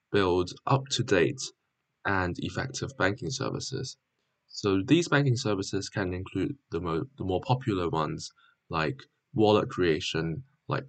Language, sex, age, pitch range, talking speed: English, male, 10-29, 100-135 Hz, 115 wpm